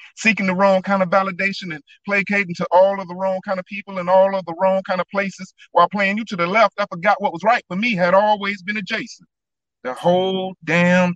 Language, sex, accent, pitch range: English, male, American, 190-220 Hz